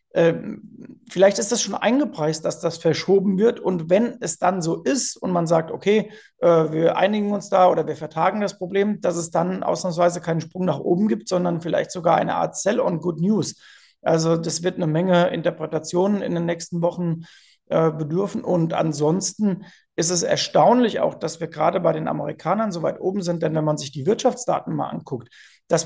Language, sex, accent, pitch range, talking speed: German, male, German, 165-195 Hz, 185 wpm